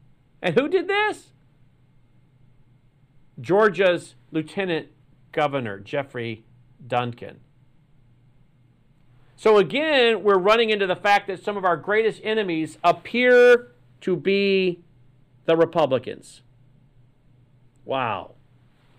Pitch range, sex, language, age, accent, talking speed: 130-190 Hz, male, English, 40-59, American, 90 wpm